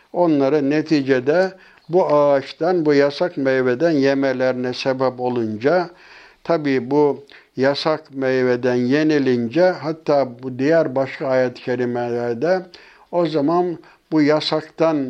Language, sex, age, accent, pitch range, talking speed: Turkish, male, 60-79, native, 130-165 Hz, 100 wpm